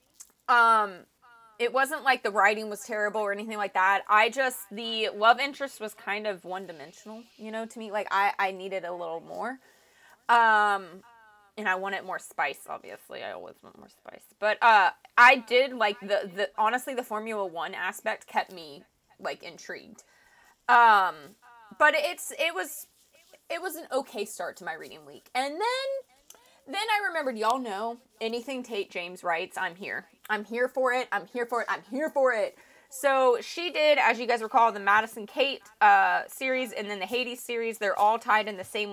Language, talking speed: English, 190 wpm